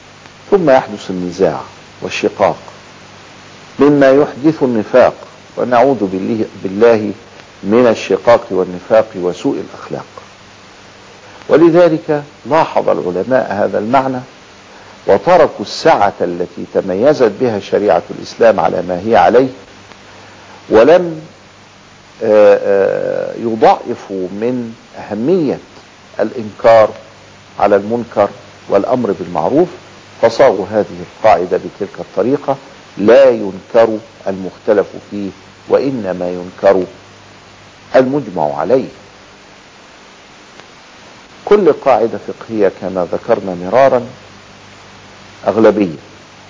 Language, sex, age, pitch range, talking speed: Arabic, male, 50-69, 100-145 Hz, 75 wpm